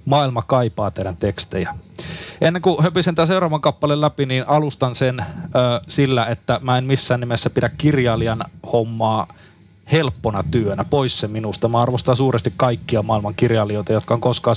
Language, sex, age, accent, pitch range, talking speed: Finnish, male, 30-49, native, 115-140 Hz, 155 wpm